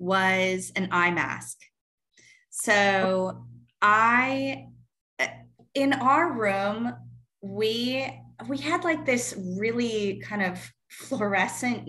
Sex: female